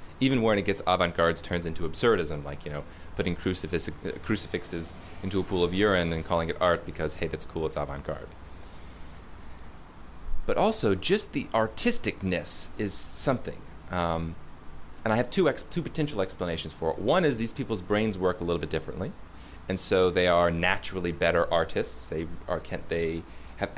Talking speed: 175 wpm